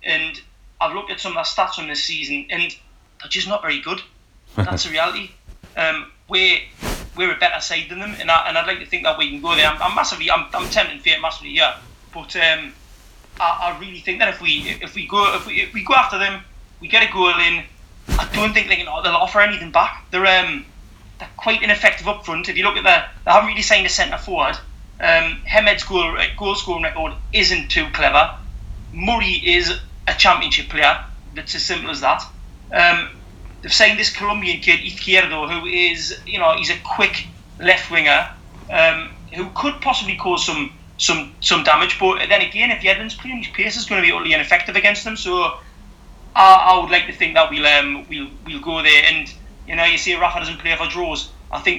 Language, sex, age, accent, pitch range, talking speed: English, male, 20-39, British, 160-205 Hz, 220 wpm